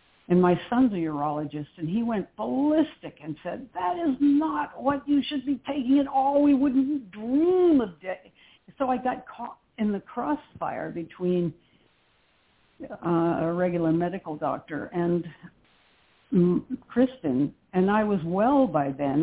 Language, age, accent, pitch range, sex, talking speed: English, 60-79, American, 155-210 Hz, female, 145 wpm